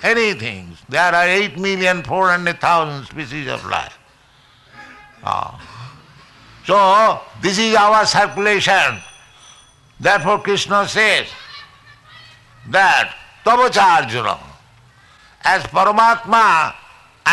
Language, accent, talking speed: English, Indian, 85 wpm